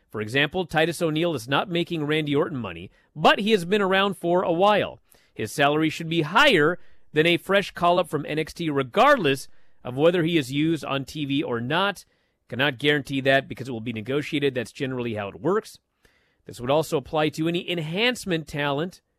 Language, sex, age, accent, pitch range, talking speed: English, male, 40-59, American, 130-170 Hz, 190 wpm